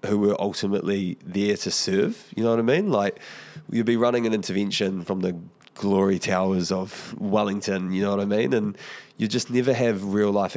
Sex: male